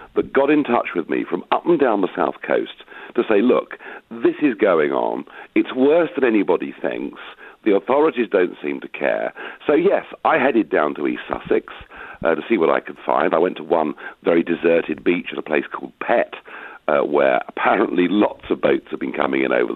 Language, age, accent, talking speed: English, 50-69, British, 210 wpm